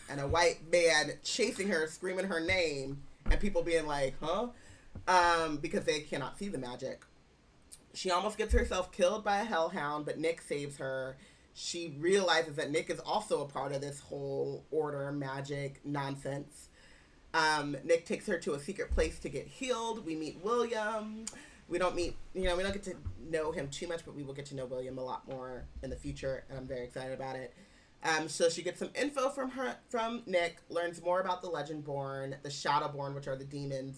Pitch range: 135-180 Hz